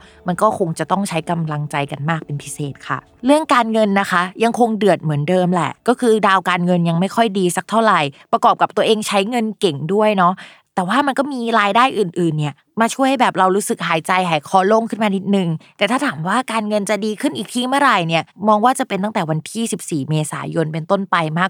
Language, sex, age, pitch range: Thai, female, 20-39, 170-220 Hz